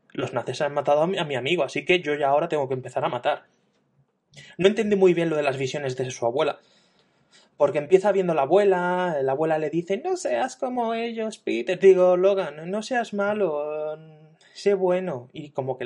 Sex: male